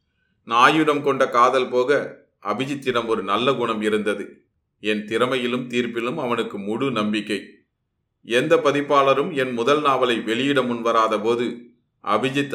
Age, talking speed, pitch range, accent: 30-49, 105 wpm, 110-130 Hz, native